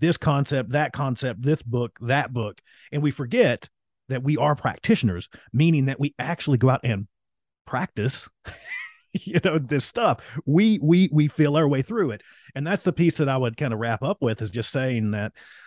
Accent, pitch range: American, 115-145 Hz